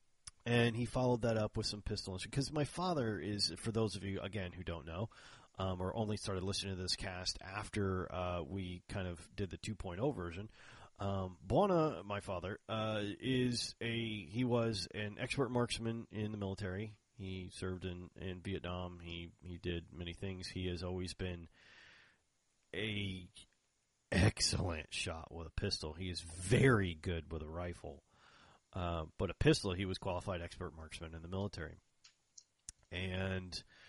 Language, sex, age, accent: English, male, 30-49, American